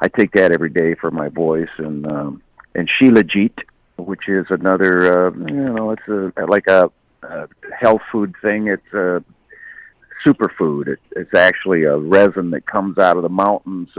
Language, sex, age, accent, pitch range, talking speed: English, male, 50-69, American, 90-105 Hz, 170 wpm